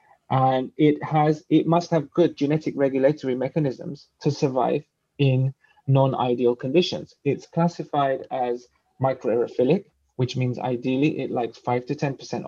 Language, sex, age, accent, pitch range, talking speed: English, male, 20-39, British, 125-155 Hz, 135 wpm